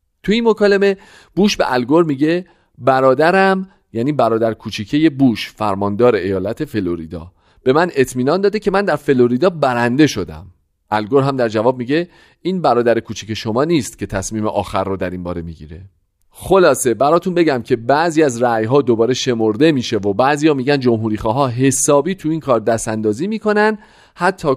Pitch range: 105-155 Hz